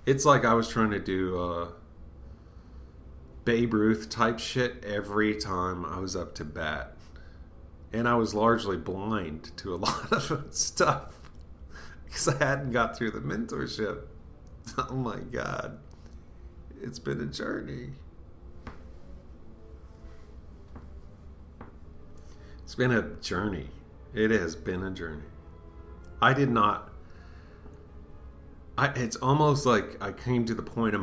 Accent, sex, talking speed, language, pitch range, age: American, male, 125 wpm, English, 75-105 Hz, 40-59